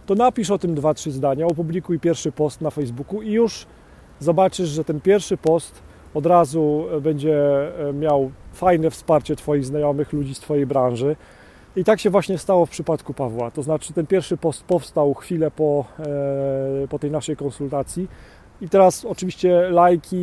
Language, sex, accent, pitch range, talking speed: Polish, male, native, 145-185 Hz, 165 wpm